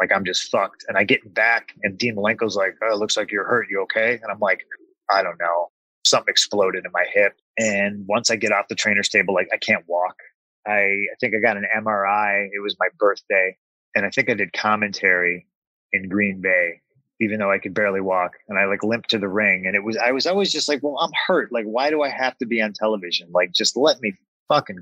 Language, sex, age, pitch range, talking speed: English, male, 20-39, 100-125 Hz, 245 wpm